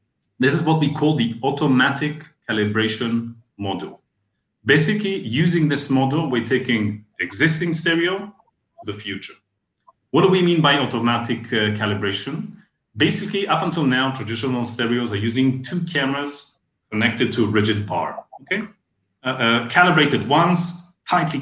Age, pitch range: 30-49, 110-160 Hz